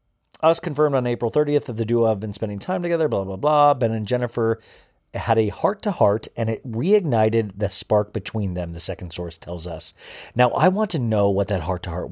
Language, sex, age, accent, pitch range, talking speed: English, male, 40-59, American, 100-125 Hz, 230 wpm